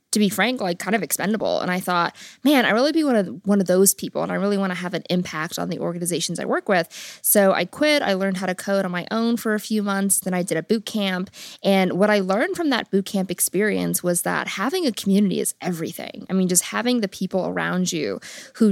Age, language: 20-39, English